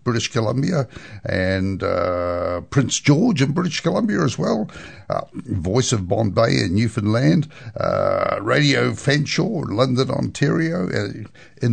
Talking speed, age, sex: 130 wpm, 60-79, male